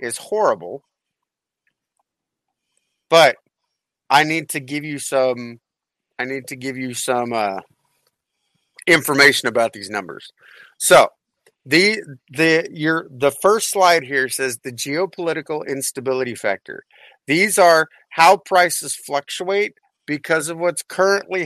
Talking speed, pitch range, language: 115 wpm, 135-160 Hz, English